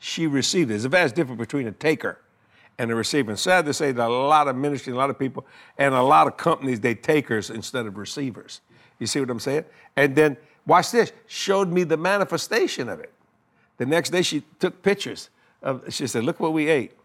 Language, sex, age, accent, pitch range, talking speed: English, male, 60-79, American, 120-155 Hz, 225 wpm